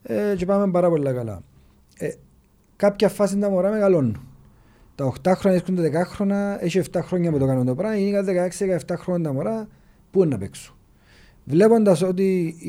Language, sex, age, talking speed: Greek, male, 40-59, 110 wpm